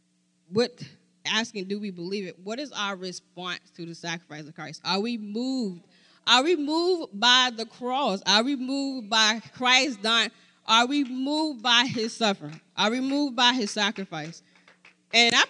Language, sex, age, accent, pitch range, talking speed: English, female, 10-29, American, 200-275 Hz, 170 wpm